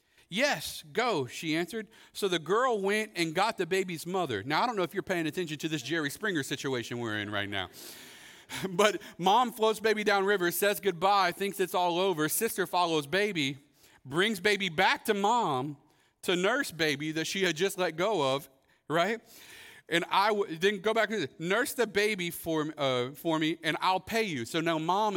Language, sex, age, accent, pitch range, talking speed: English, male, 40-59, American, 140-190 Hz, 195 wpm